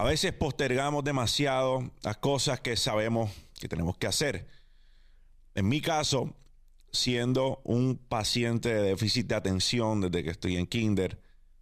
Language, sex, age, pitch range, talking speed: Spanish, male, 30-49, 95-130 Hz, 140 wpm